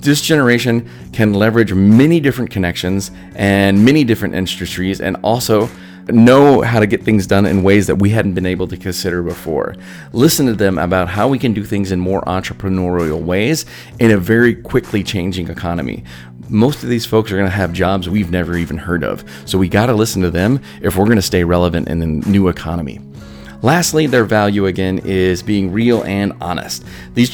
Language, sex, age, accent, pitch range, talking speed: English, male, 30-49, American, 90-115 Hz, 190 wpm